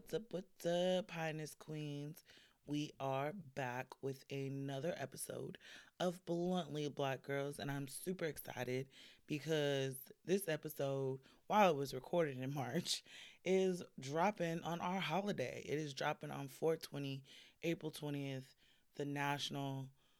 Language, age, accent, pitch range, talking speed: English, 20-39, American, 135-165 Hz, 130 wpm